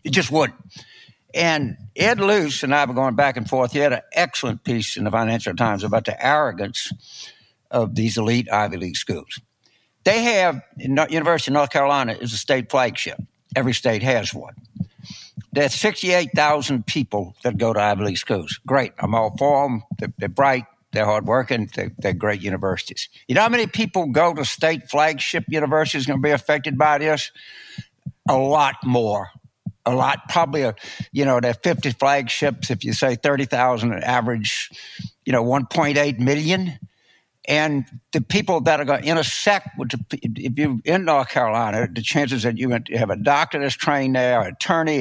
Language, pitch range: English, 120-155 Hz